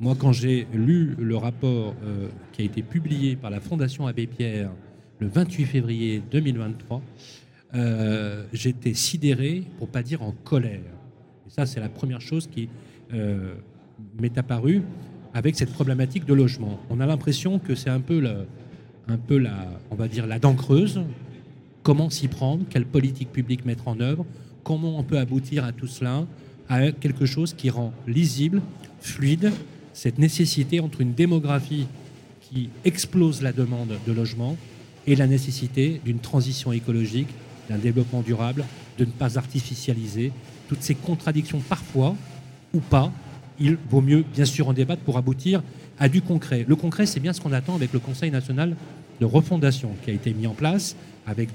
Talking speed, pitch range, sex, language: 165 wpm, 120-150 Hz, male, French